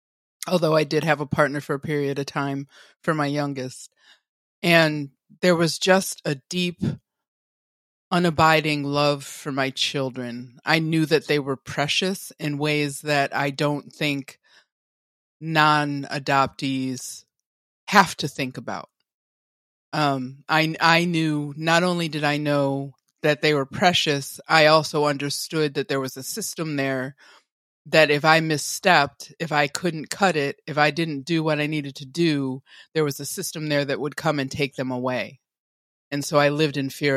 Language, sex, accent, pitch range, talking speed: English, female, American, 135-155 Hz, 160 wpm